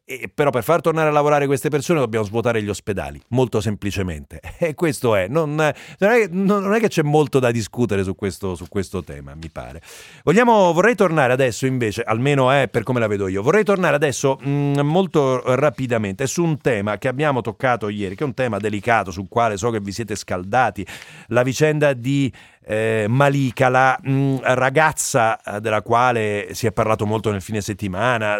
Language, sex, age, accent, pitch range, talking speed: Italian, male, 40-59, native, 105-140 Hz, 190 wpm